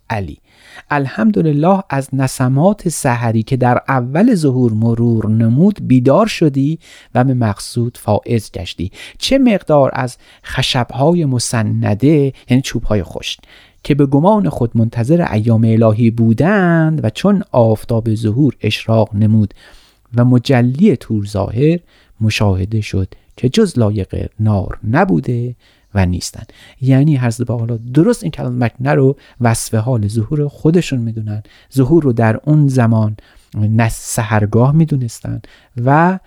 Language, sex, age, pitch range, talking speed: Persian, male, 40-59, 110-145 Hz, 125 wpm